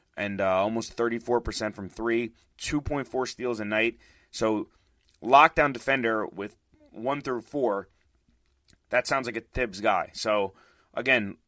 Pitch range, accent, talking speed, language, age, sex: 105-130 Hz, American, 130 wpm, English, 30-49, male